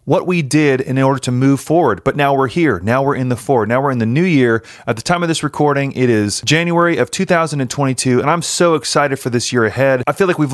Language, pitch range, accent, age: English, 125-165 Hz, American, 30-49